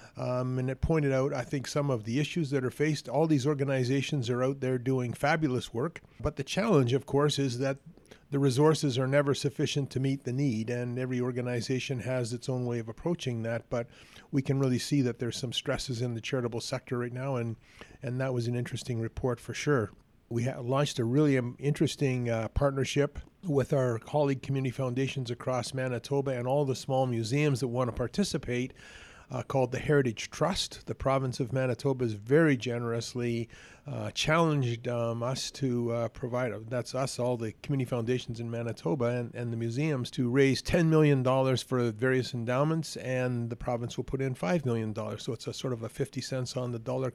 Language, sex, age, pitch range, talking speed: English, male, 40-59, 120-140 Hz, 195 wpm